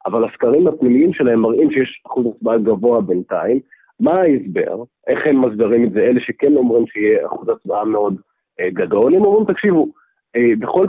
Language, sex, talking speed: Hebrew, male, 160 wpm